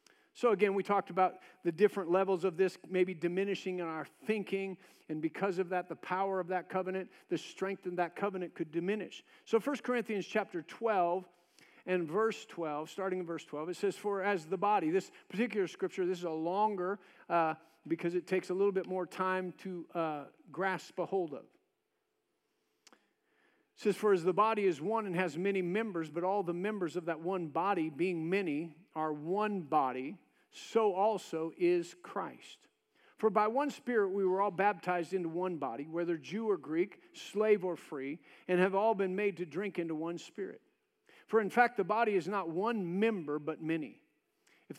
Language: English